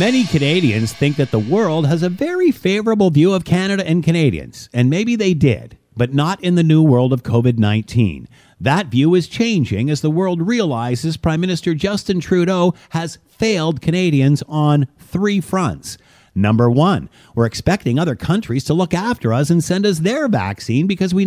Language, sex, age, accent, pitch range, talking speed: English, male, 50-69, American, 145-195 Hz, 175 wpm